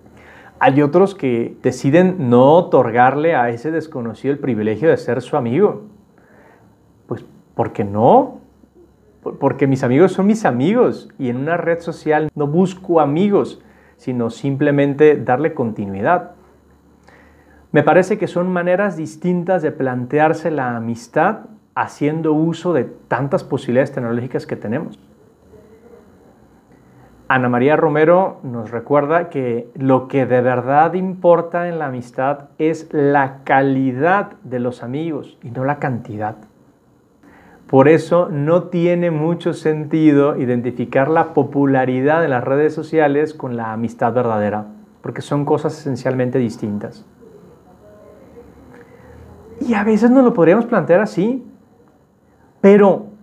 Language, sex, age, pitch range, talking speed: Spanish, male, 40-59, 130-175 Hz, 125 wpm